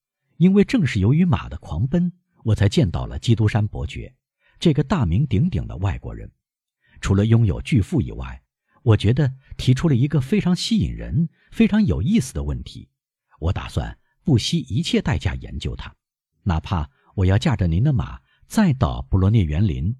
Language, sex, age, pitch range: Chinese, male, 50-69, 100-160 Hz